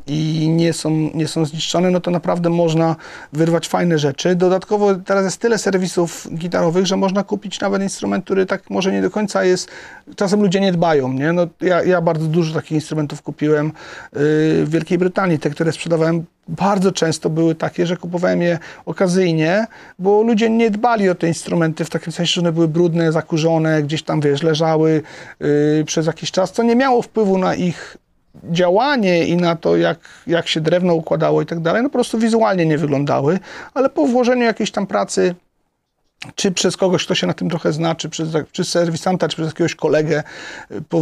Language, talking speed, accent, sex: Polish, 185 wpm, native, male